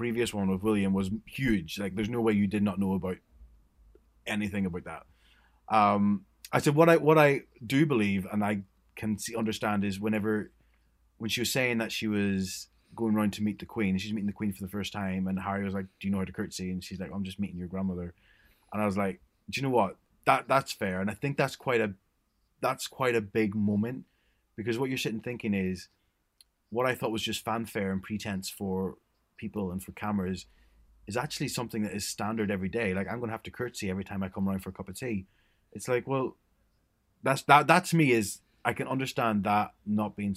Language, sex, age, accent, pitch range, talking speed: English, male, 20-39, British, 95-115 Hz, 230 wpm